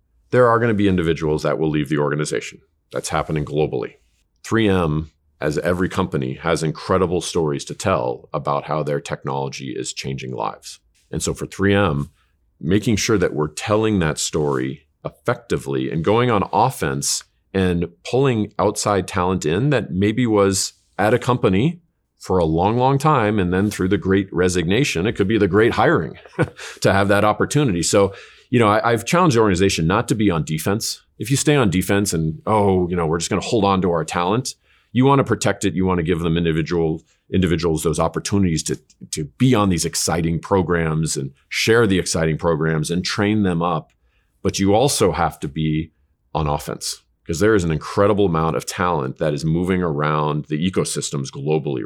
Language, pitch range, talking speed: English, 80-105 Hz, 185 wpm